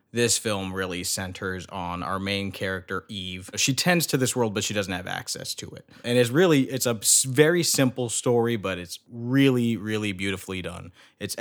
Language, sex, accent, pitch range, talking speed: English, male, American, 95-115 Hz, 190 wpm